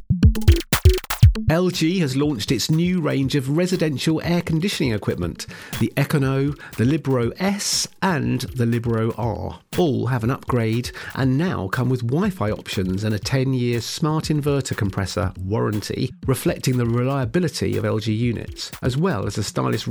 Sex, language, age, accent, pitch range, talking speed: male, English, 50-69, British, 105-145 Hz, 145 wpm